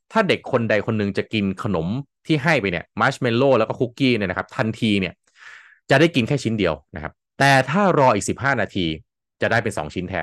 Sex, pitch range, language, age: male, 100-135 Hz, Thai, 20-39